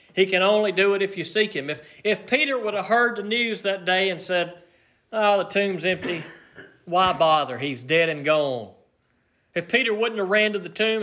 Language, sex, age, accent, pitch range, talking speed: English, male, 40-59, American, 160-205 Hz, 210 wpm